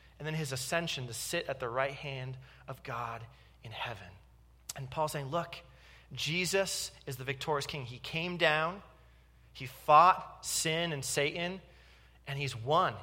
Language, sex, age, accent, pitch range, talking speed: English, male, 30-49, American, 115-155 Hz, 155 wpm